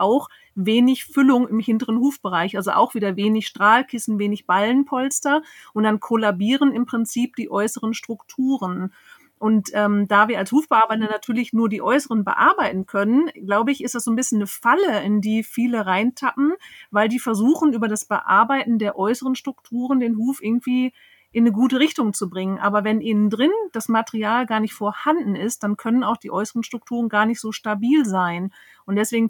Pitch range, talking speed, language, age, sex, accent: 210-260 Hz, 180 wpm, German, 40-59, female, German